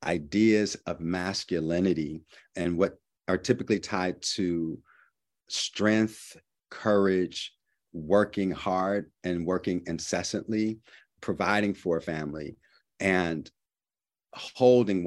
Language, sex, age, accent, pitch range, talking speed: English, male, 50-69, American, 80-95 Hz, 90 wpm